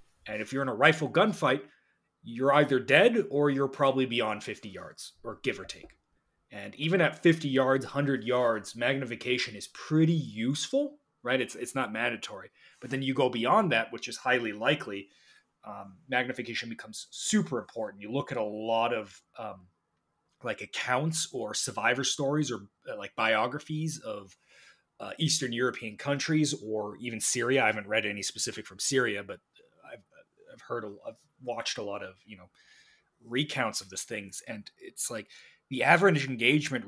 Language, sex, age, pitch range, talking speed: English, male, 30-49, 115-150 Hz, 165 wpm